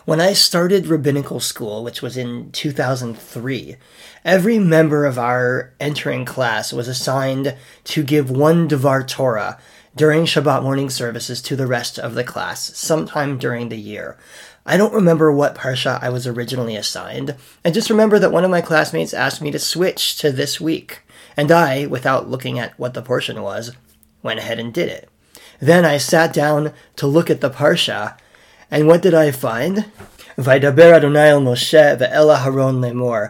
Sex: male